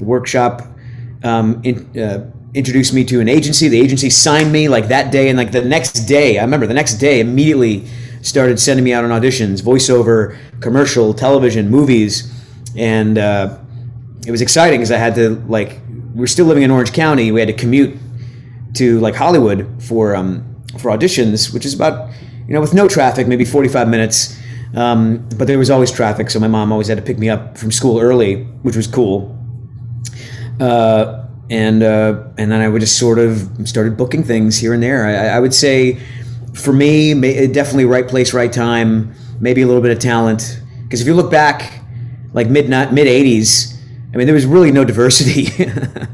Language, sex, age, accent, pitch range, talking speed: English, male, 30-49, American, 115-135 Hz, 190 wpm